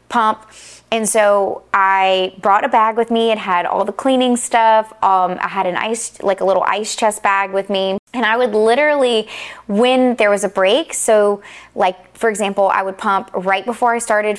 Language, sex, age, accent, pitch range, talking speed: English, female, 20-39, American, 190-230 Hz, 200 wpm